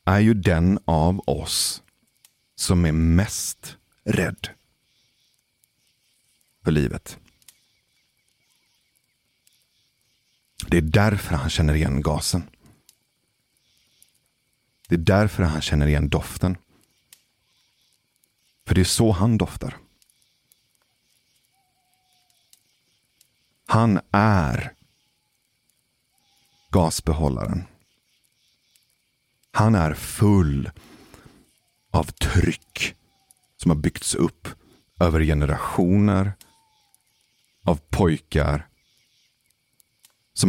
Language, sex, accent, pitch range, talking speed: Swedish, male, native, 80-110 Hz, 70 wpm